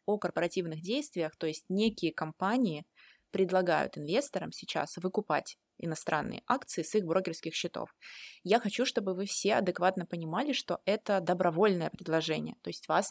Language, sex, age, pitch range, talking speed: Russian, female, 20-39, 165-195 Hz, 140 wpm